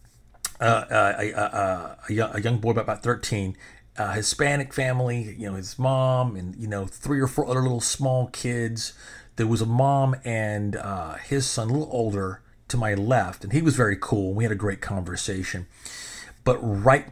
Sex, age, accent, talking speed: male, 40-59, American, 190 wpm